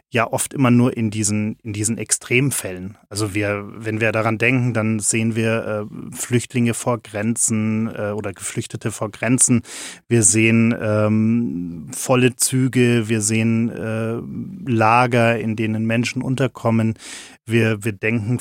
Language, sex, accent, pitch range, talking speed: German, male, German, 110-125 Hz, 140 wpm